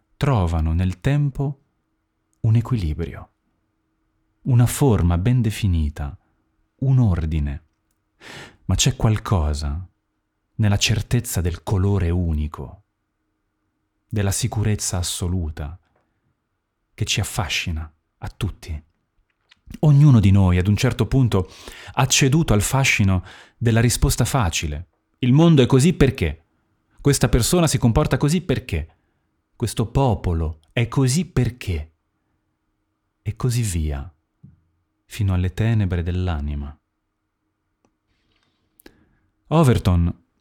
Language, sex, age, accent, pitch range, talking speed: Italian, male, 30-49, native, 85-115 Hz, 95 wpm